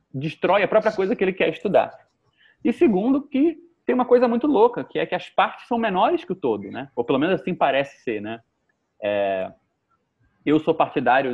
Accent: Brazilian